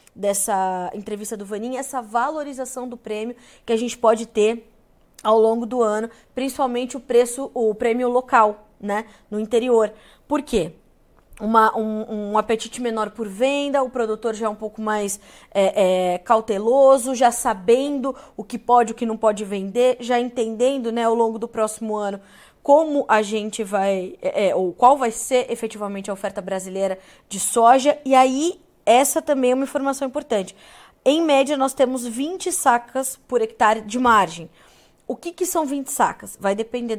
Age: 20-39